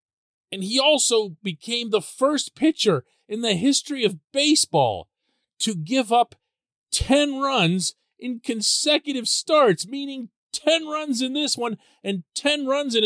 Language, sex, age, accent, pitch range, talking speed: English, male, 40-59, American, 175-255 Hz, 140 wpm